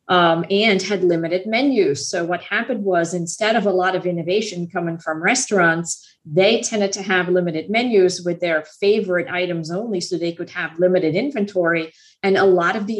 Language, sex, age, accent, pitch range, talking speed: English, female, 50-69, American, 170-210 Hz, 185 wpm